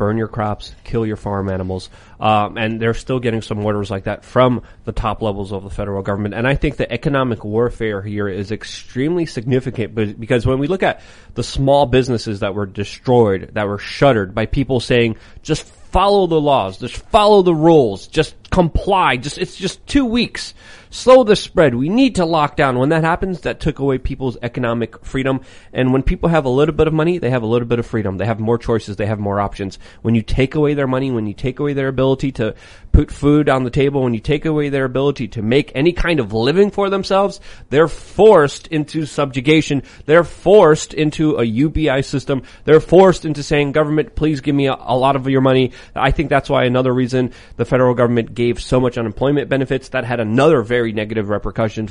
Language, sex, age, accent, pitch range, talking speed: English, male, 30-49, American, 110-145 Hz, 210 wpm